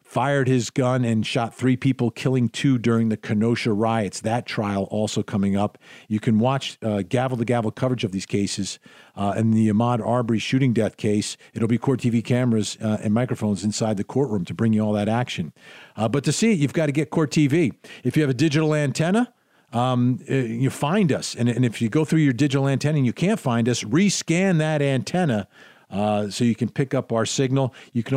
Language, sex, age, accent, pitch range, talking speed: English, male, 50-69, American, 105-135 Hz, 215 wpm